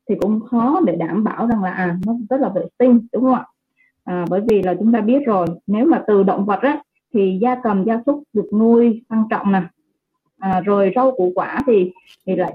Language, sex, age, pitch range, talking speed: Vietnamese, female, 20-39, 185-245 Hz, 235 wpm